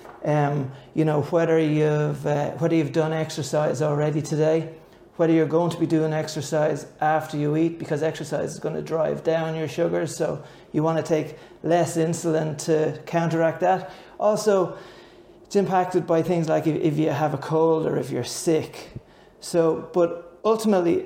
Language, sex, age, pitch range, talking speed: English, male, 30-49, 150-165 Hz, 165 wpm